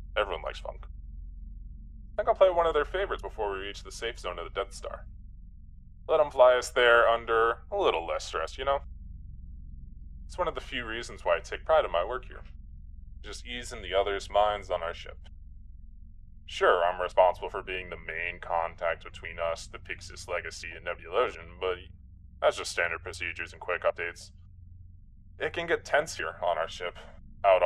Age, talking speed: 10-29, 190 wpm